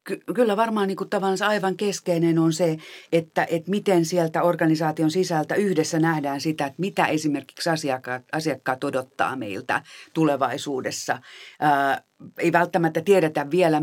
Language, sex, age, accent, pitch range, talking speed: Finnish, female, 40-59, native, 135-170 Hz, 135 wpm